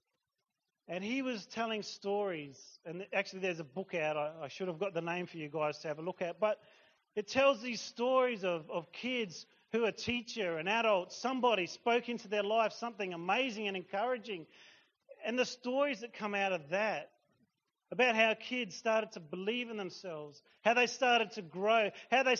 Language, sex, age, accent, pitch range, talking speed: English, male, 40-59, Australian, 185-250 Hz, 190 wpm